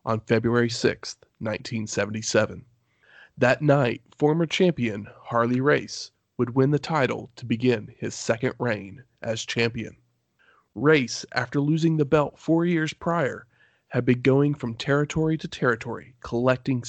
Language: English